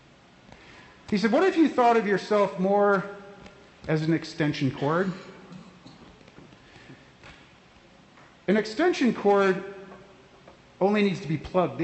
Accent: American